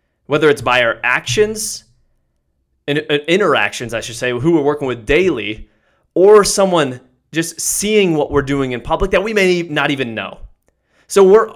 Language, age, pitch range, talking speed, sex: English, 20-39, 115-165 Hz, 160 wpm, male